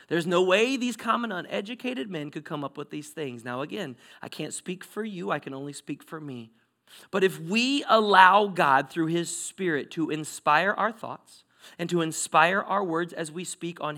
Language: English